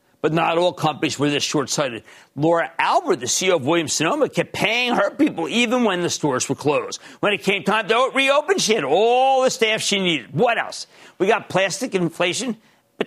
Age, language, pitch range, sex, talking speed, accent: 50-69, English, 145-215 Hz, male, 195 wpm, American